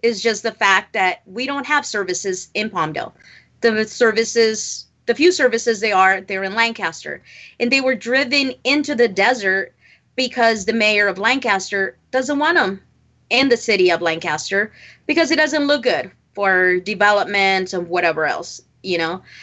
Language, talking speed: English, 165 wpm